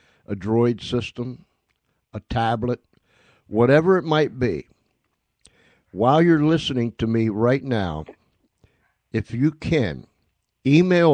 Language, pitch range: English, 105-140 Hz